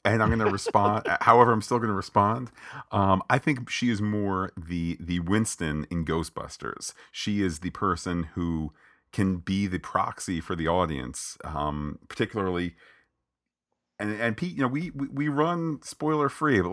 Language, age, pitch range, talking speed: English, 40-59, 80-100 Hz, 170 wpm